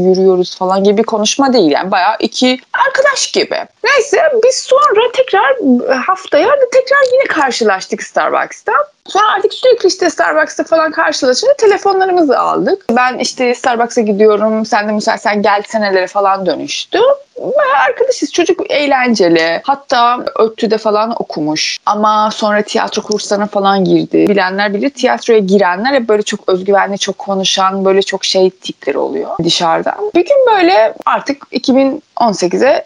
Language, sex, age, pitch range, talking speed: Turkish, female, 30-49, 205-335 Hz, 140 wpm